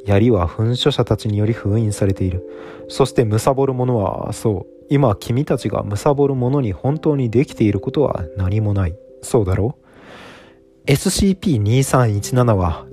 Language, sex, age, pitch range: Japanese, male, 20-39, 100-130 Hz